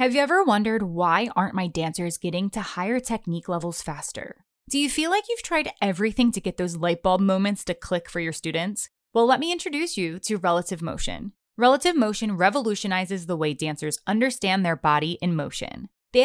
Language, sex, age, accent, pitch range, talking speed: English, female, 20-39, American, 175-260 Hz, 190 wpm